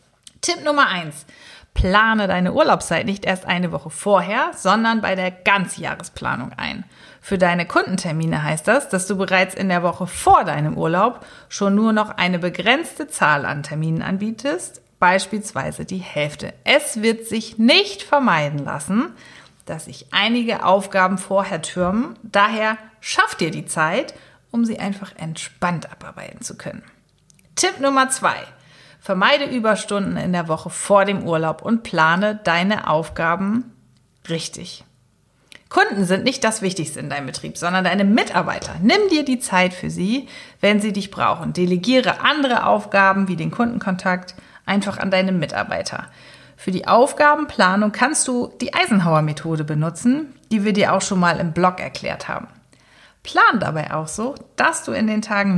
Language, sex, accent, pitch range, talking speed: German, female, German, 180-225 Hz, 150 wpm